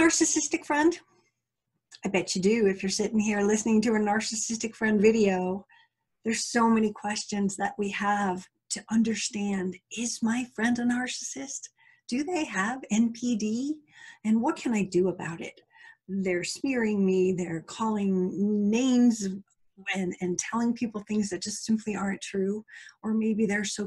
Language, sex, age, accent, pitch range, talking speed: English, female, 40-59, American, 190-235 Hz, 155 wpm